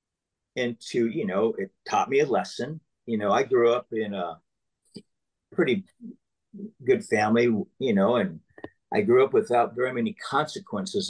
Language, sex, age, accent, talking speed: English, male, 50-69, American, 150 wpm